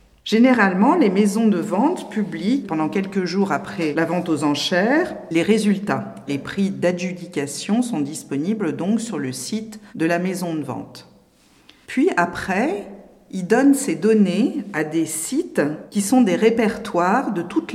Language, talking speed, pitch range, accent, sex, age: French, 150 wpm, 155-225 Hz, French, female, 50-69